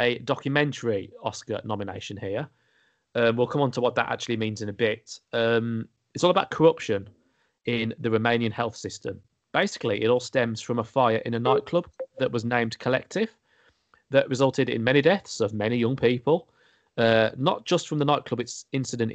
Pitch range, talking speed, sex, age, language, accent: 115-145 Hz, 180 wpm, male, 30-49, English, British